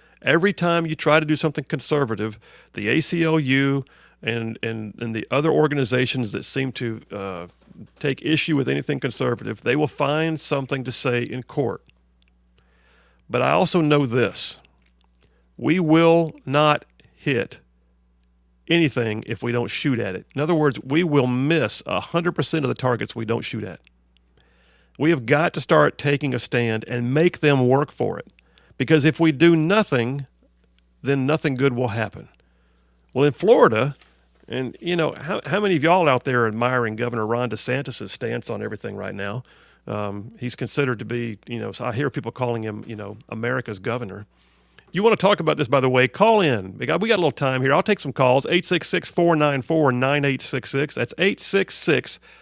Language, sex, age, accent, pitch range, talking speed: English, male, 50-69, American, 110-155 Hz, 175 wpm